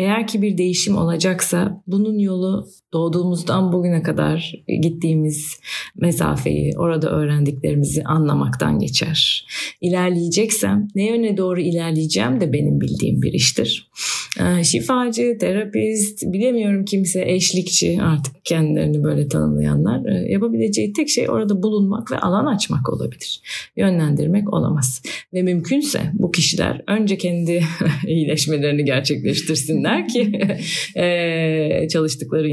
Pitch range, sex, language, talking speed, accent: 145-180 Hz, female, Turkish, 105 wpm, native